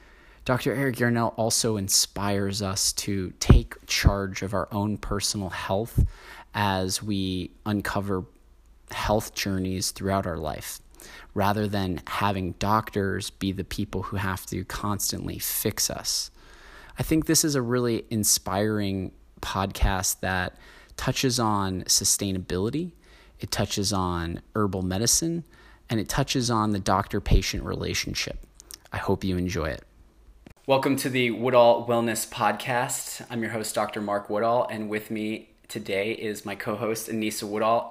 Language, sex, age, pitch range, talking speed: English, male, 20-39, 95-115 Hz, 135 wpm